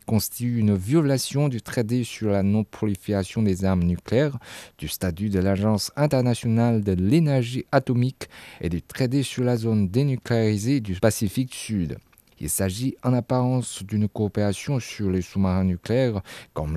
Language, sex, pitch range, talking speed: French, male, 100-130 Hz, 145 wpm